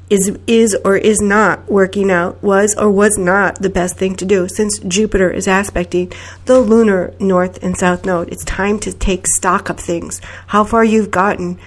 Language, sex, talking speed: English, female, 185 wpm